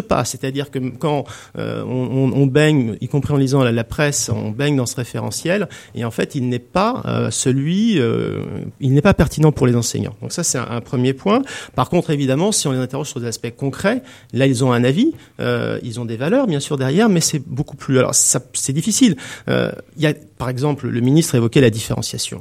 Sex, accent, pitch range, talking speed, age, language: male, French, 120-150 Hz, 230 wpm, 40-59, French